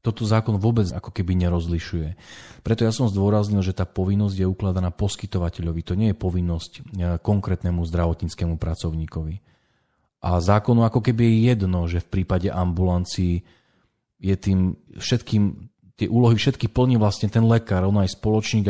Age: 40-59